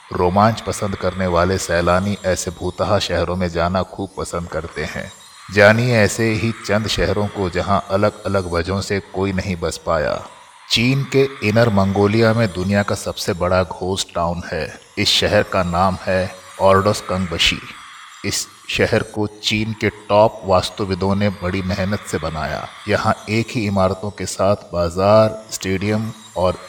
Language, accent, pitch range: Hindi, native, 95-105 Hz